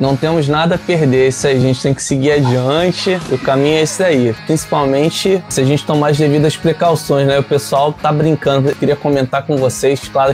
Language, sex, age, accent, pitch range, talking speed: Portuguese, male, 20-39, Brazilian, 130-155 Hz, 205 wpm